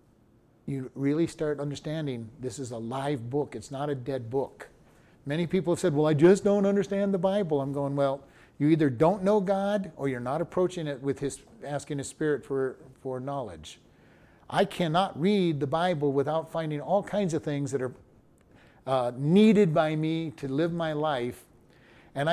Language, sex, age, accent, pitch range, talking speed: English, male, 40-59, American, 145-185 Hz, 185 wpm